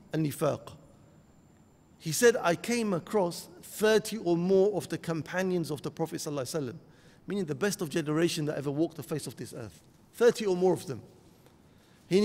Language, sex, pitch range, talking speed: English, male, 150-185 Hz, 170 wpm